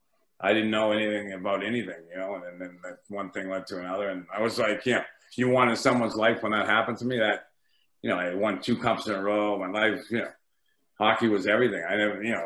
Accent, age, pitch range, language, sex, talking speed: American, 50-69, 95-115 Hz, English, male, 245 wpm